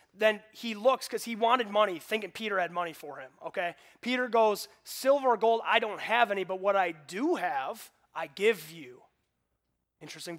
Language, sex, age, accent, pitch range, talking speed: English, male, 30-49, American, 170-220 Hz, 185 wpm